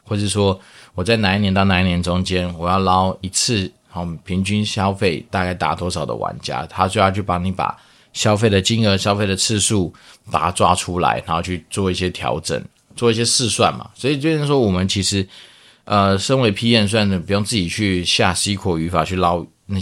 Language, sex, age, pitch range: Chinese, male, 20-39, 90-105 Hz